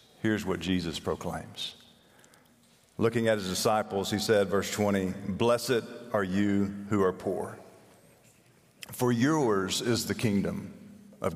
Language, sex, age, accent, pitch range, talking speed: English, male, 50-69, American, 100-140 Hz, 125 wpm